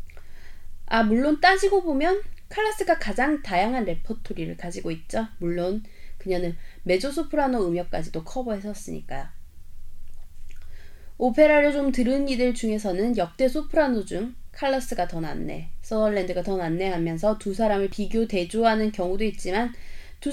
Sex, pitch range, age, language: female, 170-265 Hz, 20-39, Korean